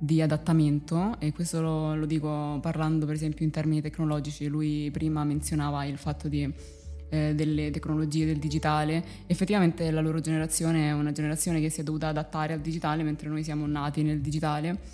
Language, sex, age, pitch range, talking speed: Italian, female, 20-39, 155-170 Hz, 175 wpm